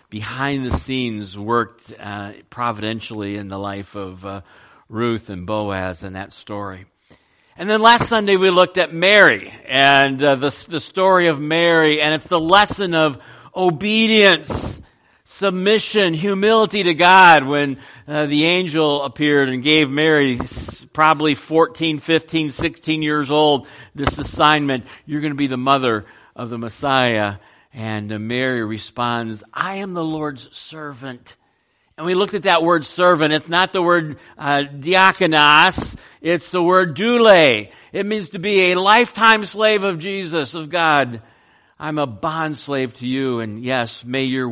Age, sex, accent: 50-69, male, American